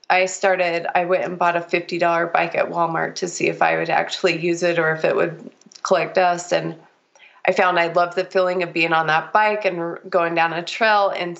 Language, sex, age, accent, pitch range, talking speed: English, female, 20-39, American, 170-190 Hz, 225 wpm